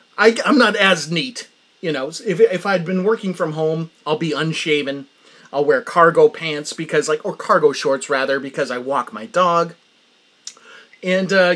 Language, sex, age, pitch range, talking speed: English, male, 30-49, 140-235 Hz, 175 wpm